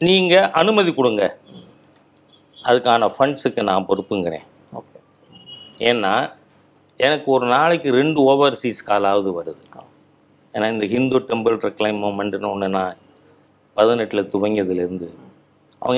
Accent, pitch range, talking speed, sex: native, 100-145 Hz, 95 wpm, male